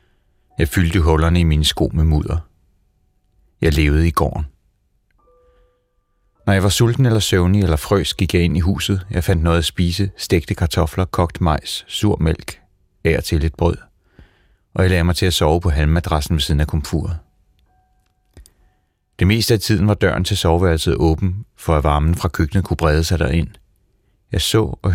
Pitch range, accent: 85-100 Hz, native